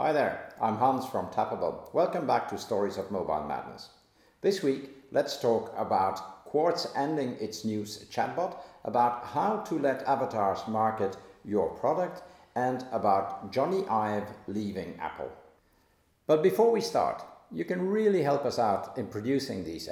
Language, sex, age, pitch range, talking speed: English, male, 50-69, 100-140 Hz, 150 wpm